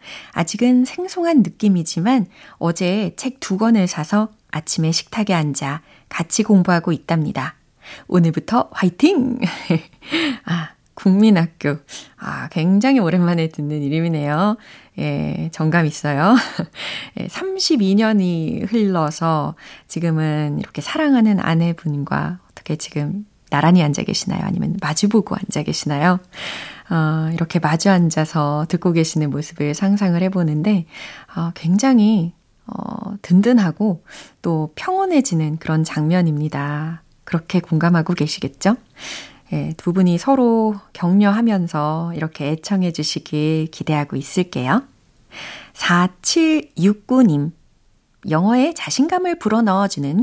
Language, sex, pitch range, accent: Korean, female, 160-215 Hz, native